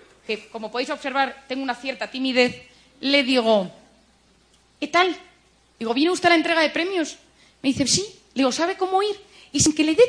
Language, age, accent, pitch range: Spanish, 30-49, Spanish, 225-310 Hz